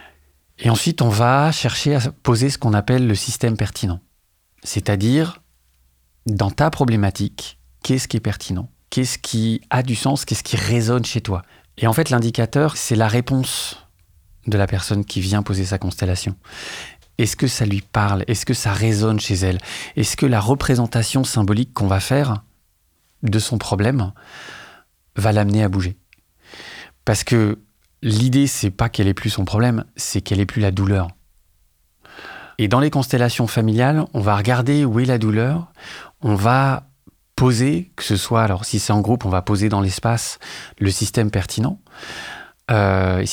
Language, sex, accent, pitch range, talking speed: French, male, French, 100-125 Hz, 165 wpm